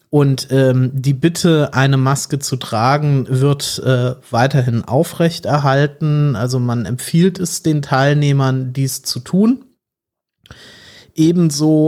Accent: German